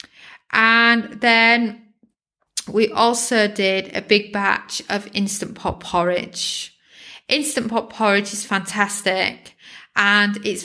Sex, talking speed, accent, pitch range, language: female, 105 wpm, British, 195-240 Hz, English